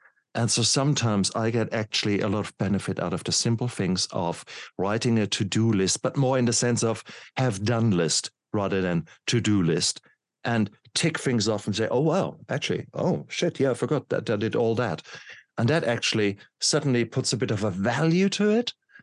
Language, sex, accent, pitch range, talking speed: English, male, German, 110-140 Hz, 200 wpm